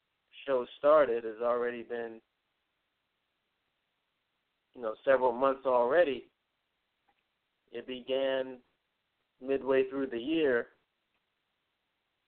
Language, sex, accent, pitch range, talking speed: English, male, American, 120-140 Hz, 80 wpm